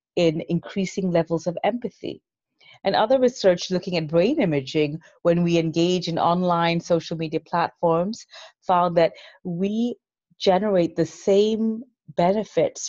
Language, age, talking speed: English, 30-49, 125 wpm